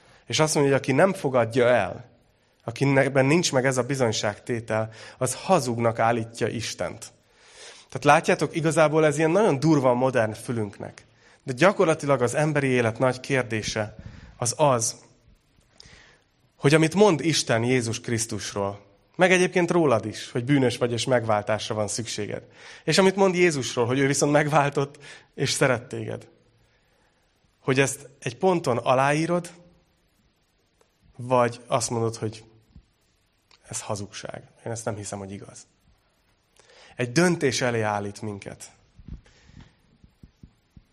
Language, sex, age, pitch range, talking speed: Hungarian, male, 30-49, 115-150 Hz, 125 wpm